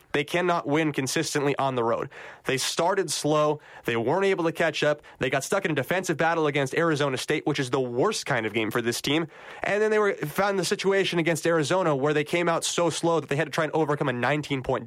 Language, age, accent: English, 20-39, American